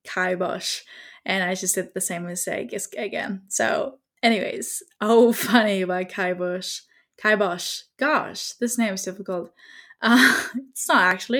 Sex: female